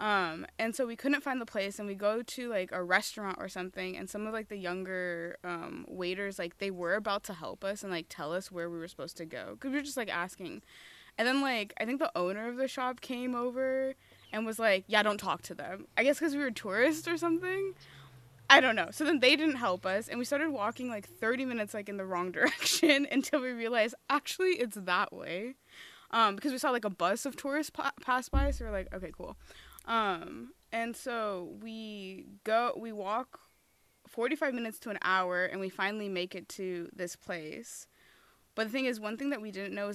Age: 20-39